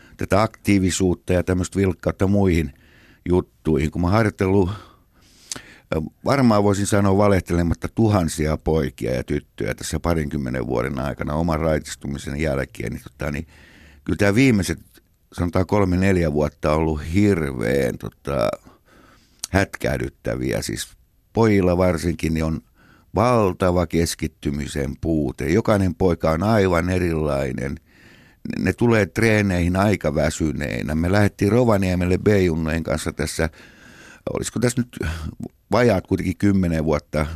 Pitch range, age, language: 80-100 Hz, 60-79, Finnish